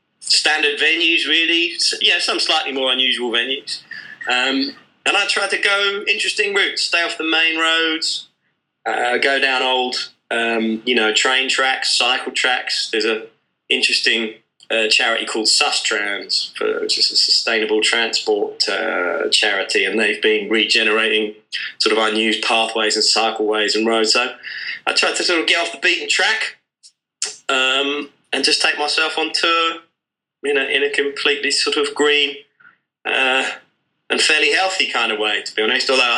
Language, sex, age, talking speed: English, male, 20-39, 165 wpm